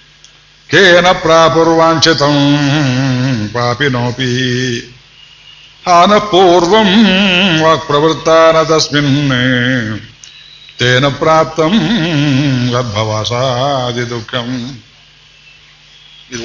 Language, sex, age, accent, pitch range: Kannada, male, 60-79, native, 130-160 Hz